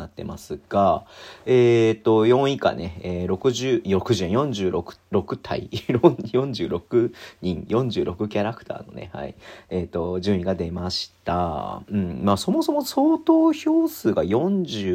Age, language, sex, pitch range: 40-59, Japanese, male, 95-120 Hz